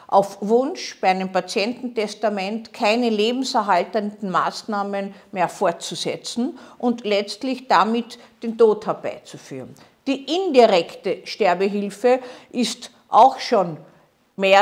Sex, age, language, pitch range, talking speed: female, 50-69, German, 195-250 Hz, 95 wpm